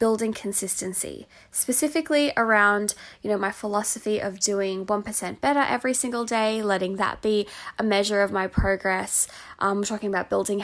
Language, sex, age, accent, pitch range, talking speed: English, female, 20-39, Australian, 195-240 Hz, 170 wpm